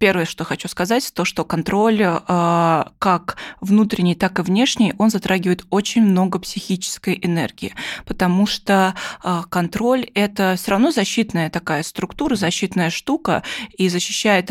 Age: 20-39